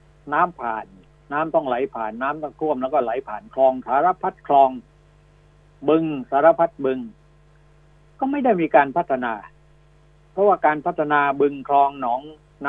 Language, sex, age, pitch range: Thai, male, 60-79, 135-155 Hz